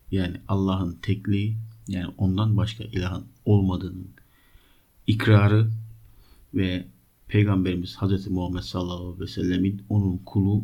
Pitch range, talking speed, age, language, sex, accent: 95-110 Hz, 105 wpm, 50-69, Turkish, male, native